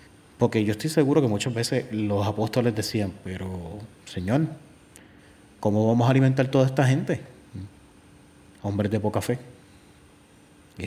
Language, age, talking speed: Spanish, 30-49, 135 wpm